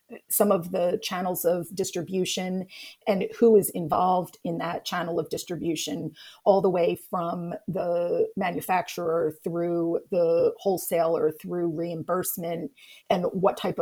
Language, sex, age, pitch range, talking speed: English, female, 40-59, 170-215 Hz, 125 wpm